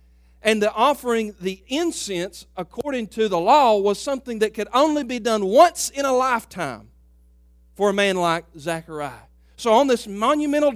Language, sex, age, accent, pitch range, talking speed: English, male, 40-59, American, 170-245 Hz, 160 wpm